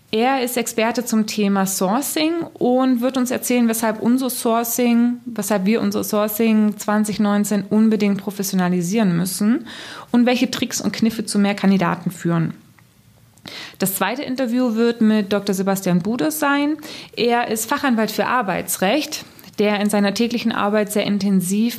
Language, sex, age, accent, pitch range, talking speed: German, female, 20-39, German, 195-240 Hz, 130 wpm